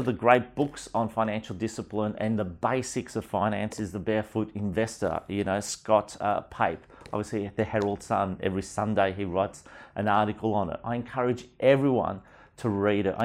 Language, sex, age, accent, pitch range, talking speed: English, male, 40-59, Australian, 100-120 Hz, 180 wpm